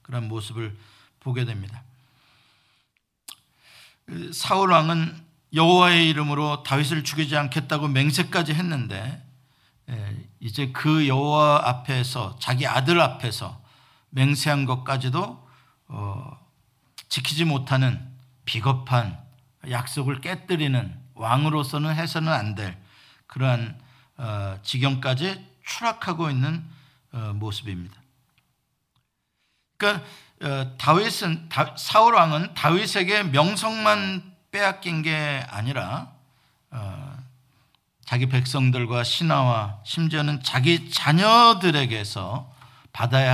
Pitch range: 125-160 Hz